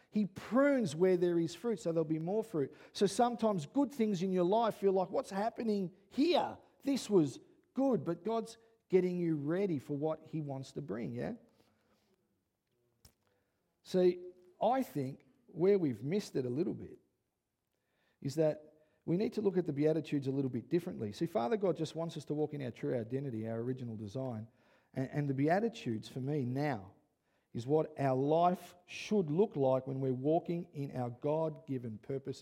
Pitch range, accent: 145-200 Hz, Australian